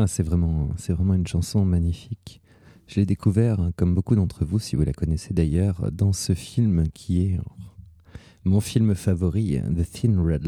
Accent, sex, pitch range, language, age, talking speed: French, male, 90-115 Hz, French, 30-49, 170 wpm